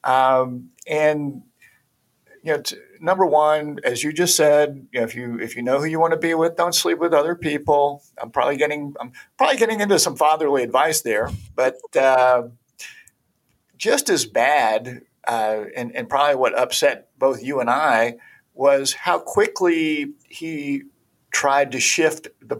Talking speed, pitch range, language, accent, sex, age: 165 wpm, 130-180 Hz, English, American, male, 50-69